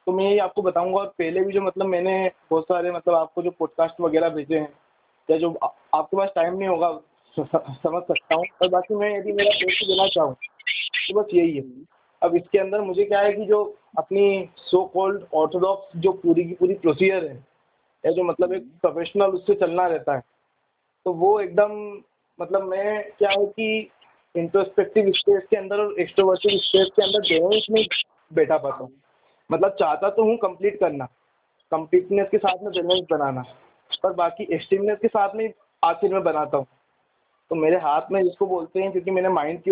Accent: native